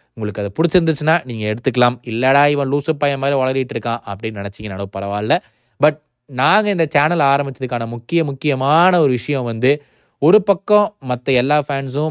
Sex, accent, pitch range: male, native, 120-155 Hz